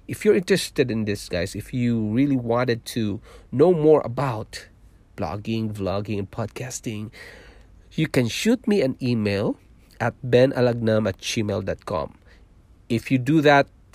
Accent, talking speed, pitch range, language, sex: Filipino, 140 wpm, 100-125 Hz, English, male